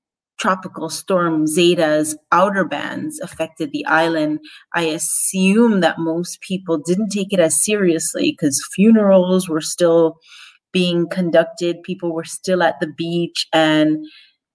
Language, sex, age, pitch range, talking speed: English, female, 30-49, 160-185 Hz, 130 wpm